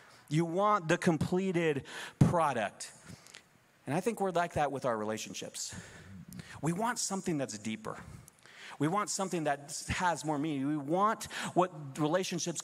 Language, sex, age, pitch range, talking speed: English, male, 30-49, 125-165 Hz, 145 wpm